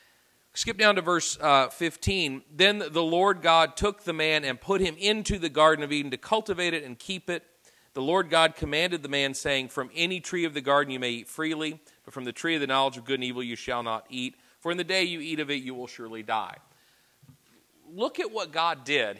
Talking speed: 240 wpm